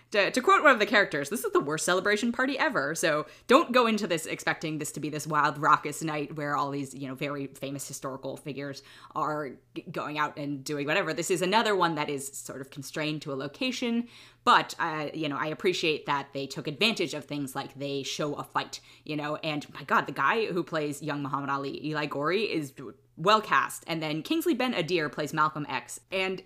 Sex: female